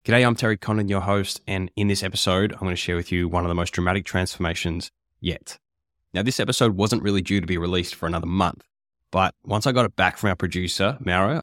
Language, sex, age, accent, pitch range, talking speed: English, male, 10-29, Australian, 85-105 Hz, 235 wpm